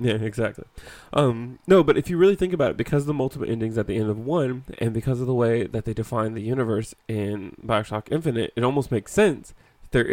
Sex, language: male, English